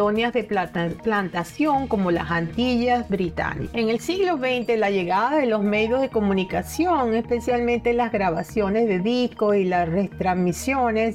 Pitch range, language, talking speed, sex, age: 190-240 Hz, Spanish, 135 wpm, female, 50-69